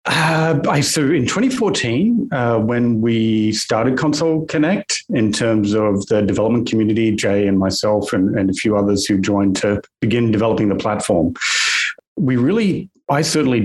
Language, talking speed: English, 160 wpm